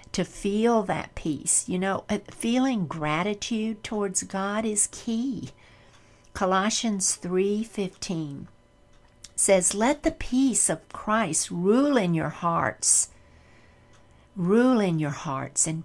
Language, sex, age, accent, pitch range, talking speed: English, female, 60-79, American, 160-205 Hz, 110 wpm